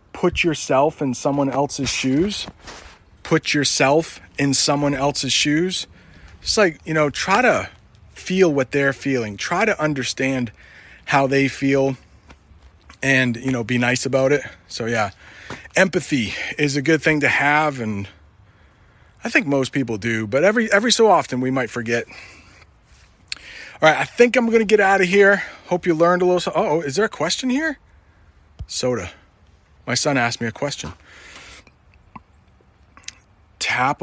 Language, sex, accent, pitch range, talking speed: English, male, American, 115-165 Hz, 155 wpm